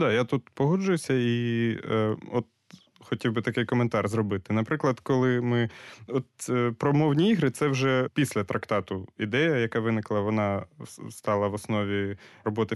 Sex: male